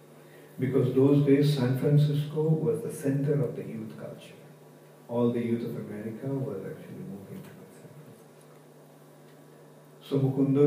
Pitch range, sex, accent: 120-155 Hz, male, Indian